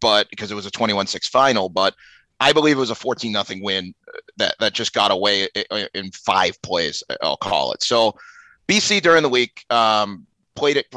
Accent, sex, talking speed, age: American, male, 185 wpm, 30-49